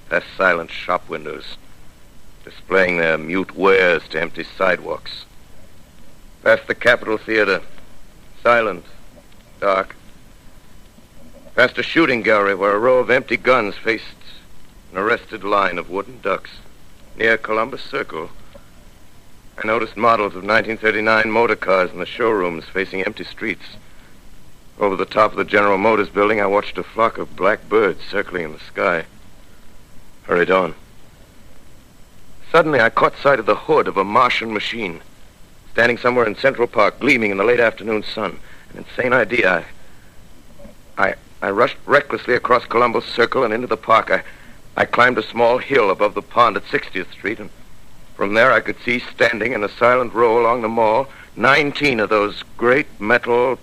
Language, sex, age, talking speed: English, male, 60-79, 155 wpm